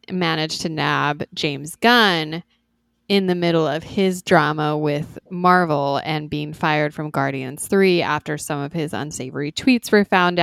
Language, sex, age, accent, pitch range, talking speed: English, female, 20-39, American, 155-195 Hz, 155 wpm